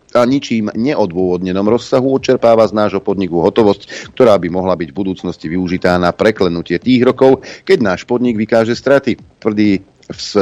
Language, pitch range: Slovak, 90-115 Hz